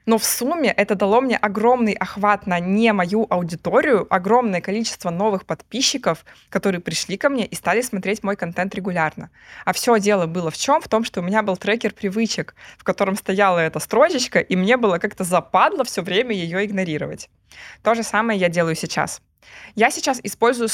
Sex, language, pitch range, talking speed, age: female, Russian, 180-225 Hz, 180 wpm, 20-39